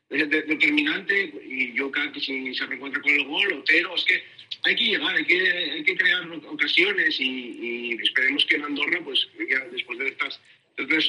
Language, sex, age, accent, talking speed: Spanish, male, 40-59, Spanish, 195 wpm